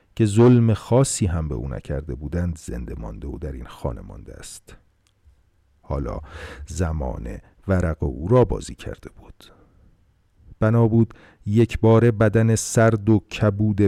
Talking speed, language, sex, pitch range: 135 wpm, Persian, male, 80-110 Hz